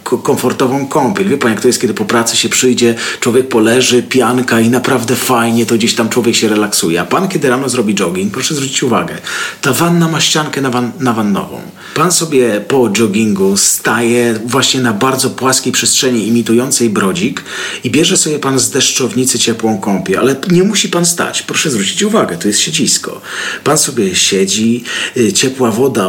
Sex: male